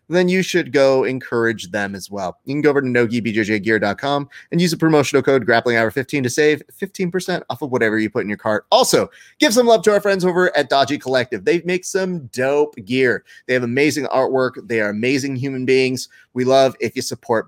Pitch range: 120-155 Hz